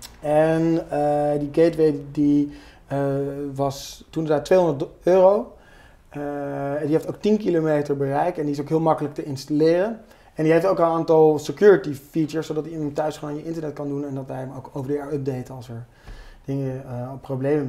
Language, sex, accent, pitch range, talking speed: Dutch, male, Dutch, 135-155 Hz, 190 wpm